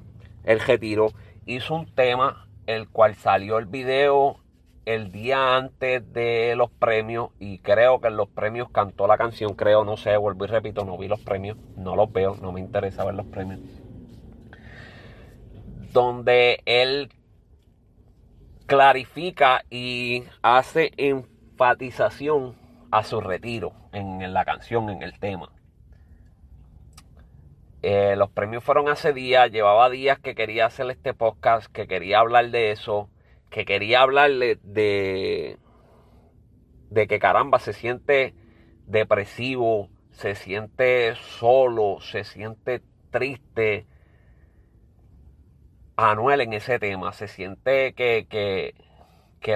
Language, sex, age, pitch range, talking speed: Spanish, male, 30-49, 100-125 Hz, 125 wpm